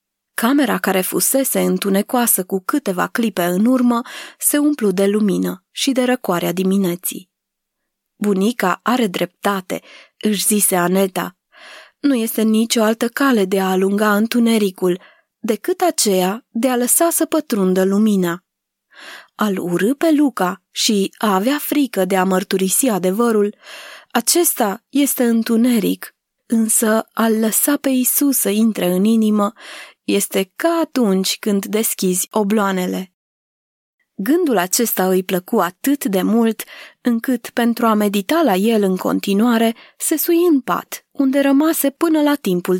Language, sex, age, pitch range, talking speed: Romanian, female, 20-39, 195-255 Hz, 130 wpm